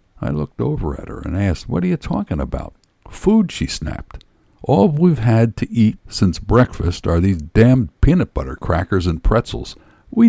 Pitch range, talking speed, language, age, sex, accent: 85-110 Hz, 180 wpm, English, 60-79, male, American